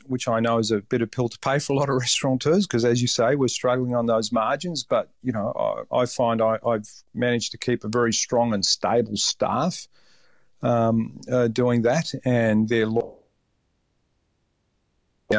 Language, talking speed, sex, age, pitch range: English, 185 wpm, male, 50-69, 110-135 Hz